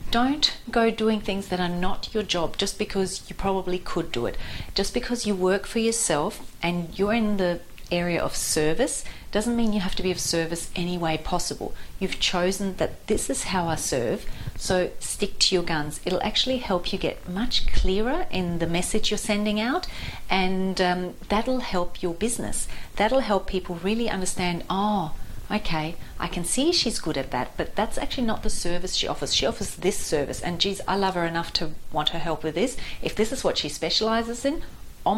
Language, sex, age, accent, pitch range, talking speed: English, female, 40-59, Australian, 170-215 Hz, 200 wpm